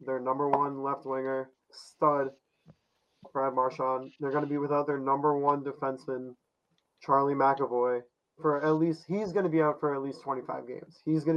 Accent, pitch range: American, 135-155 Hz